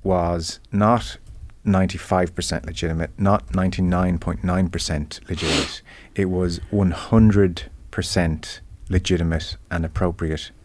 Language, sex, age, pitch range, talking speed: English, male, 30-49, 85-100 Hz, 75 wpm